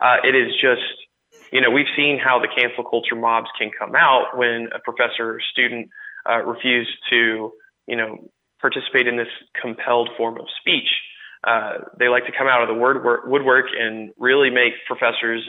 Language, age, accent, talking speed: English, 20-39, American, 180 wpm